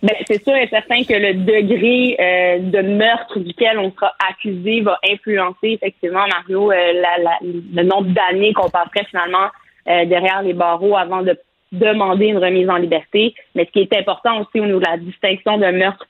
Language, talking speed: French, 190 wpm